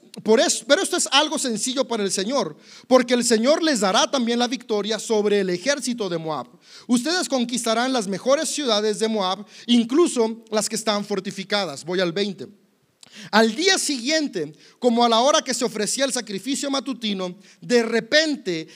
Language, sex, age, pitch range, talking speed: Spanish, male, 40-59, 190-255 Hz, 165 wpm